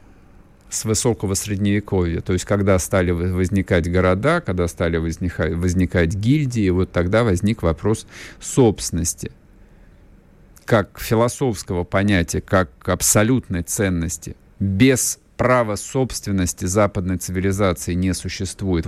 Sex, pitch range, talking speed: male, 90-110 Hz, 100 wpm